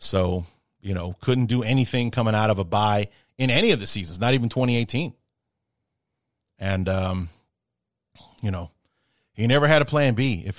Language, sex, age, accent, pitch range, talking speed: English, male, 40-59, American, 100-120 Hz, 170 wpm